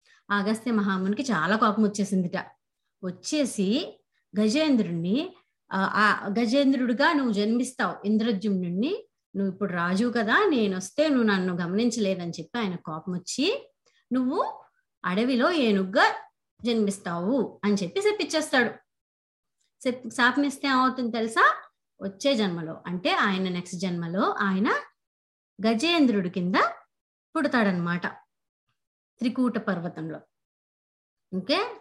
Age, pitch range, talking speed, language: 30-49, 190-260 Hz, 90 wpm, Telugu